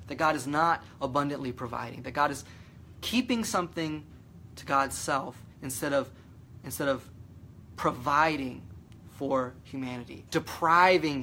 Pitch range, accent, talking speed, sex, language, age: 110-155 Hz, American, 110 wpm, male, English, 30-49